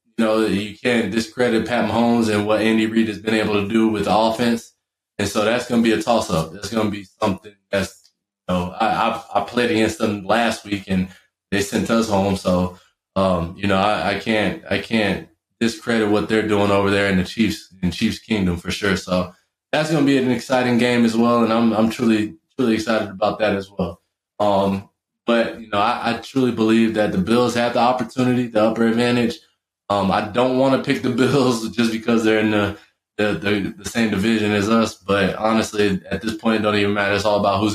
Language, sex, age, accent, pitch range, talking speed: English, male, 20-39, American, 100-110 Hz, 220 wpm